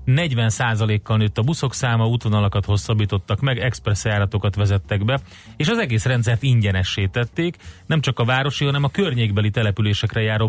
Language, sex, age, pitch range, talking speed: Hungarian, male, 30-49, 100-120 Hz, 160 wpm